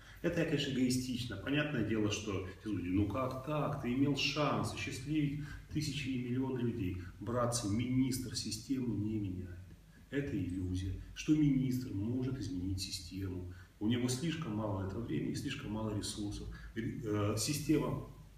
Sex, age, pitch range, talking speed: male, 30-49, 105-135 Hz, 135 wpm